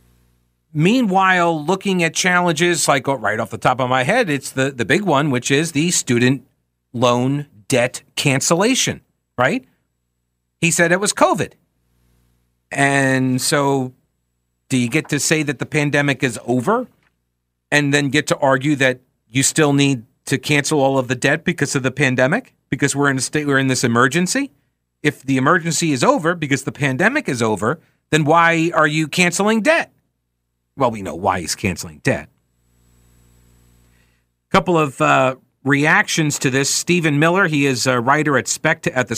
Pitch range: 120-170 Hz